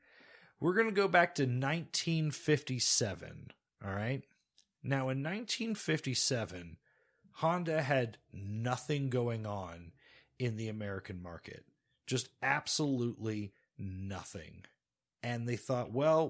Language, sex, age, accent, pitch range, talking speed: English, male, 30-49, American, 100-140 Hz, 105 wpm